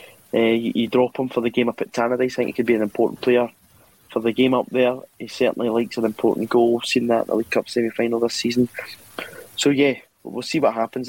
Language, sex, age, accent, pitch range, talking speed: English, male, 20-39, British, 115-130 Hz, 250 wpm